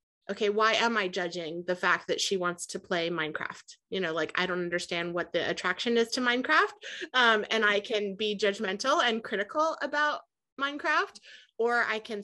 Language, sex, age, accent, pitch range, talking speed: English, female, 30-49, American, 185-235 Hz, 185 wpm